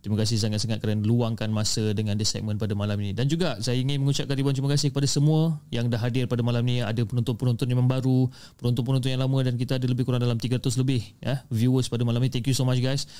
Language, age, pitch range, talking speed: Malay, 30-49, 115-140 Hz, 240 wpm